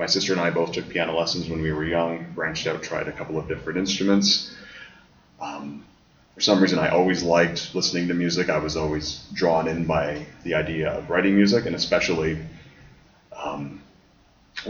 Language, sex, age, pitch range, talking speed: English, male, 30-49, 80-95 Hz, 180 wpm